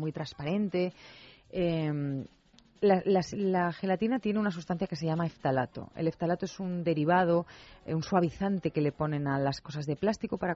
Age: 30-49